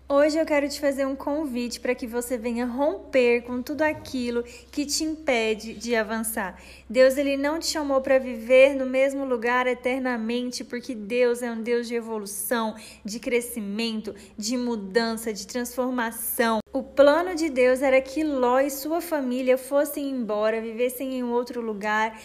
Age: 10-29